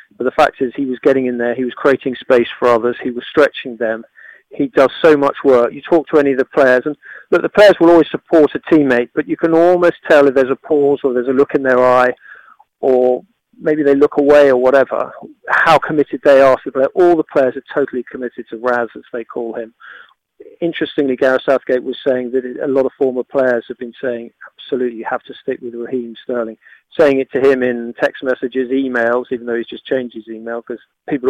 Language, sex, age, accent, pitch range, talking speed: English, male, 40-59, British, 125-150 Hz, 230 wpm